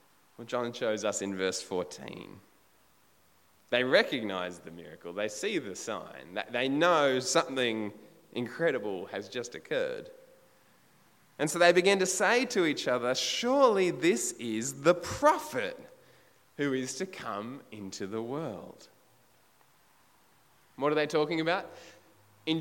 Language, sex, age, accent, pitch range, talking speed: English, male, 20-39, Australian, 125-185 Hz, 125 wpm